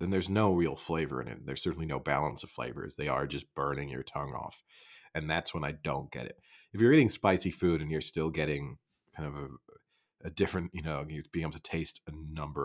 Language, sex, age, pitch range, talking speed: English, male, 40-59, 75-90 Hz, 230 wpm